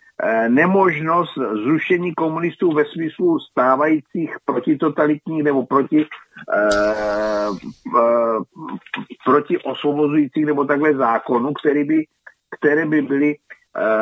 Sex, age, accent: male, 50-69, native